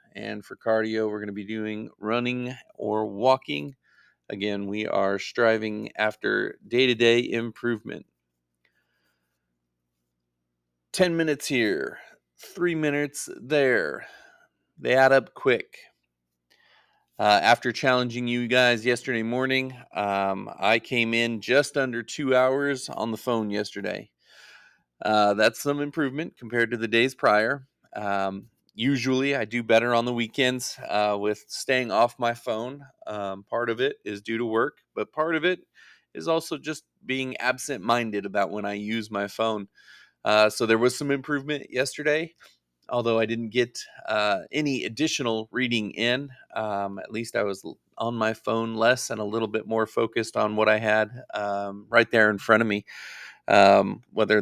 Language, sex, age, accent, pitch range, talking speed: English, male, 40-59, American, 105-130 Hz, 150 wpm